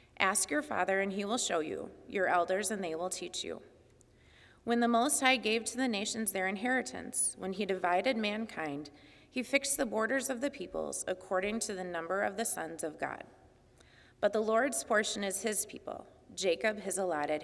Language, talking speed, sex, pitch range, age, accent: English, 190 wpm, female, 190-240 Hz, 30-49, American